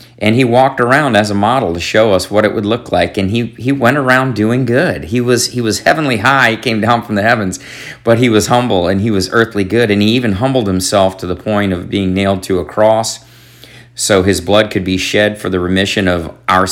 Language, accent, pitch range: English, American, 95-120 Hz